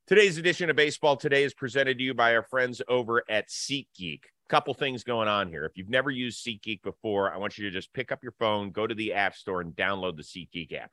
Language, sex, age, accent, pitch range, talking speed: English, male, 30-49, American, 100-125 Hz, 245 wpm